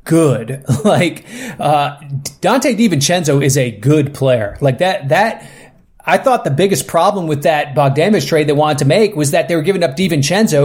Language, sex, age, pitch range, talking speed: English, male, 30-49, 135-165 Hz, 180 wpm